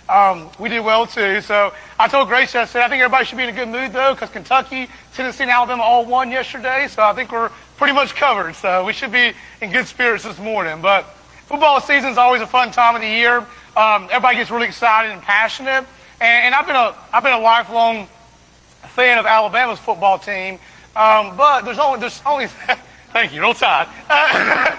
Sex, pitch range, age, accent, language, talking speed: male, 200-250 Hz, 30-49, American, English, 205 wpm